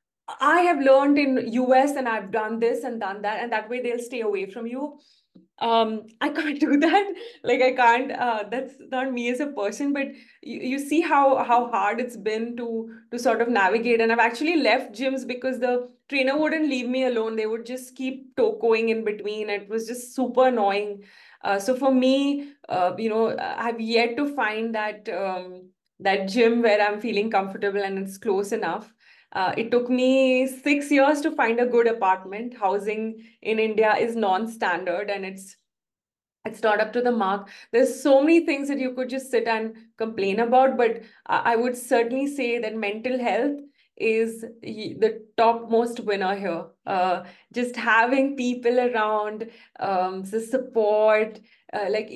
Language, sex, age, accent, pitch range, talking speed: English, female, 20-39, Indian, 220-260 Hz, 180 wpm